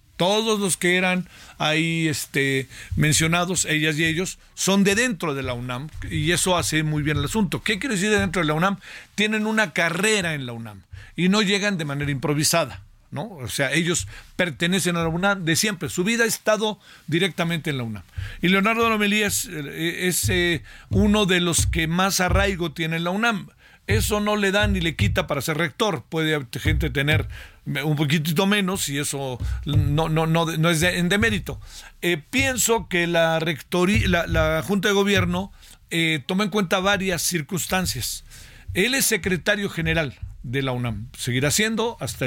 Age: 50-69